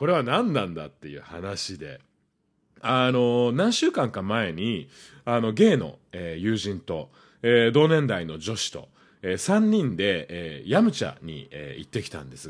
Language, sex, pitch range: Japanese, male, 95-150 Hz